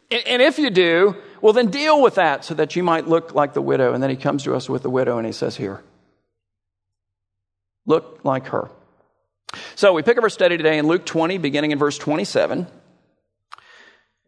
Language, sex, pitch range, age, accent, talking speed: English, male, 145-200 Hz, 50-69, American, 200 wpm